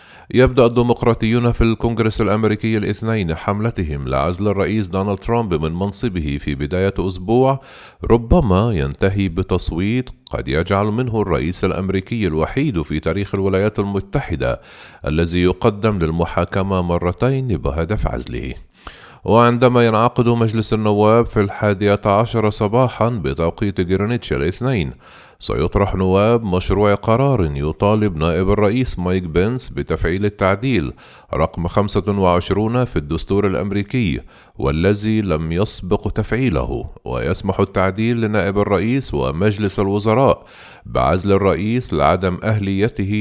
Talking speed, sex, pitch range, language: 105 wpm, male, 90-110 Hz, Arabic